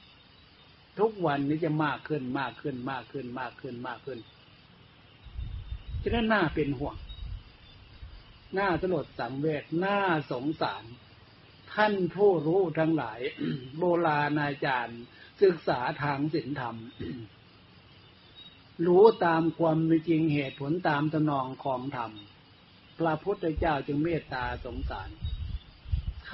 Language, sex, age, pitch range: Thai, male, 60-79, 115-165 Hz